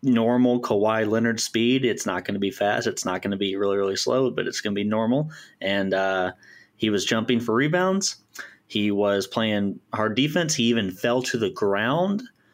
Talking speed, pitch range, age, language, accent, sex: 200 wpm, 105-135 Hz, 30-49, English, American, male